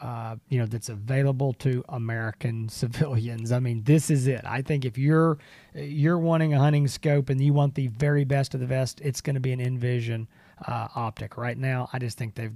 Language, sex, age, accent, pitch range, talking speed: English, male, 40-59, American, 125-150 Hz, 215 wpm